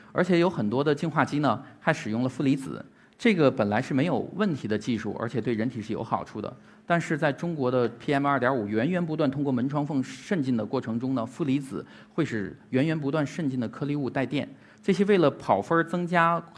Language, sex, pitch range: Chinese, male, 120-165 Hz